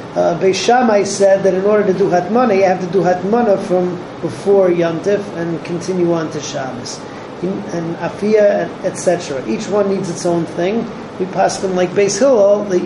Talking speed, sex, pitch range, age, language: 175 wpm, male, 175-205 Hz, 40-59, English